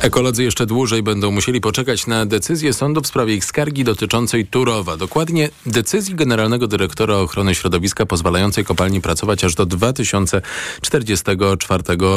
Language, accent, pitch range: Polish, native, 95-130 Hz